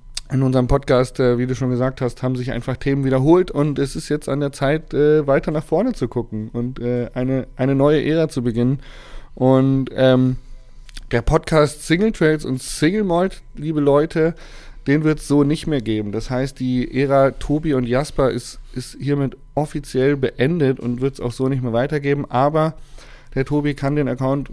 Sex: male